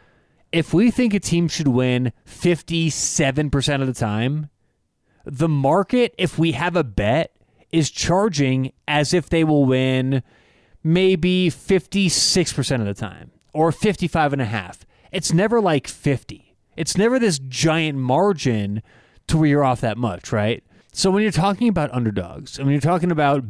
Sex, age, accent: male, 30-49, American